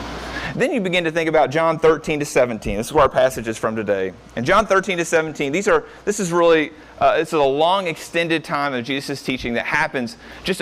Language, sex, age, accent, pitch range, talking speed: English, male, 30-49, American, 130-170 Hz, 225 wpm